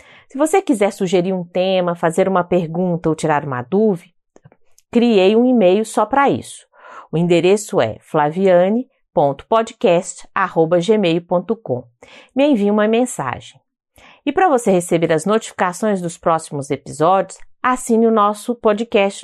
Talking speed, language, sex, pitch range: 125 wpm, Portuguese, female, 180-235 Hz